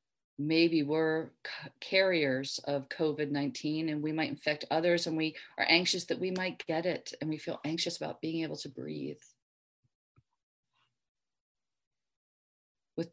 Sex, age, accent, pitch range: female, 40-59, American, 145-170 Hz